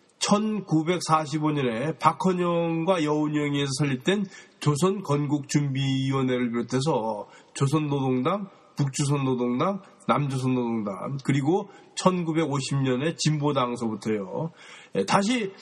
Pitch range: 130-185 Hz